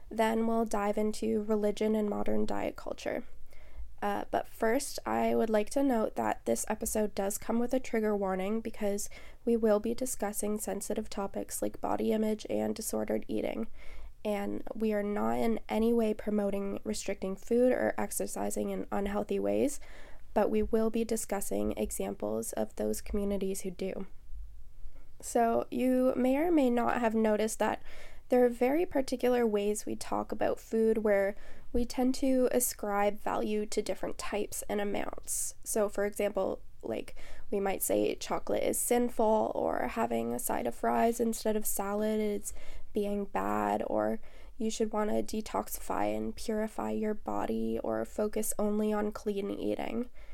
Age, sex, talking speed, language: 10-29, female, 155 wpm, English